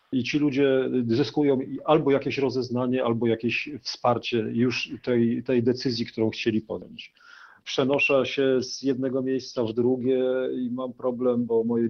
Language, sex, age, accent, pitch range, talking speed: Polish, male, 40-59, native, 120-150 Hz, 145 wpm